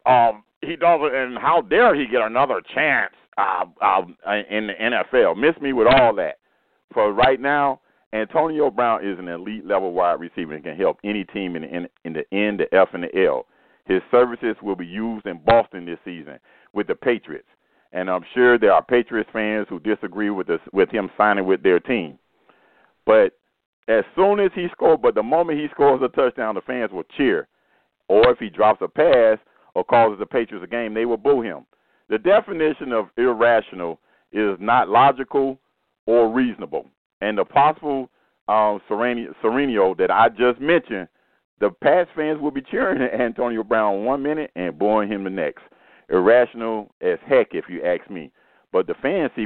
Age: 50-69